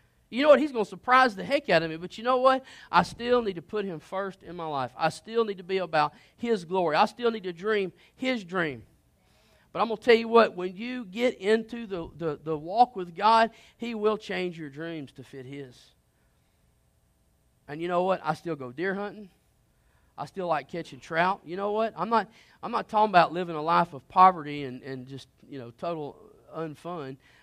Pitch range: 135-205 Hz